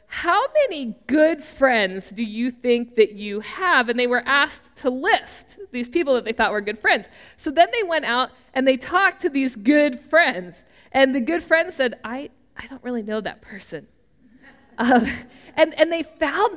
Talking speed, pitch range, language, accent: 190 wpm, 240-315 Hz, English, American